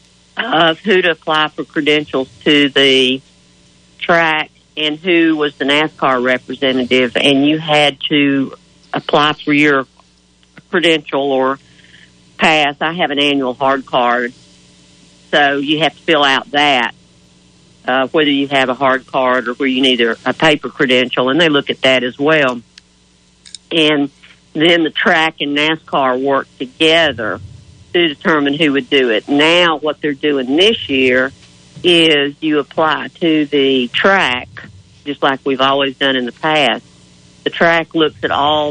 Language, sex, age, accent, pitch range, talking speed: English, female, 50-69, American, 125-150 Hz, 150 wpm